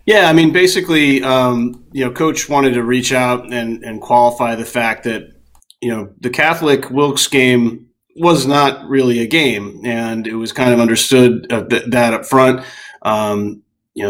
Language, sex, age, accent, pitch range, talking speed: English, male, 30-49, American, 115-135 Hz, 170 wpm